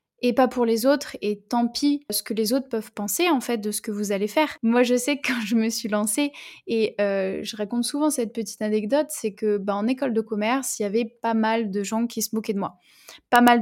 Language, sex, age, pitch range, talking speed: French, female, 20-39, 220-260 Hz, 265 wpm